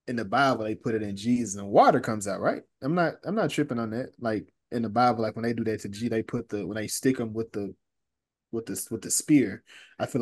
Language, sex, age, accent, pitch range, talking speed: English, male, 20-39, American, 100-120 Hz, 275 wpm